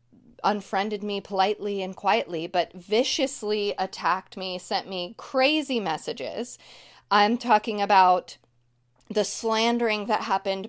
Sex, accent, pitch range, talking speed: female, American, 195-245 Hz, 110 wpm